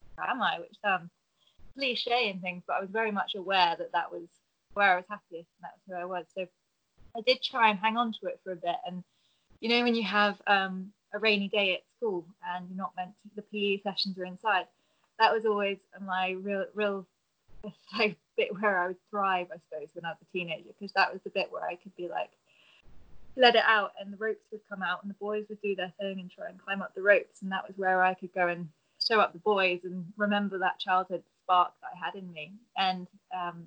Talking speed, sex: 240 wpm, female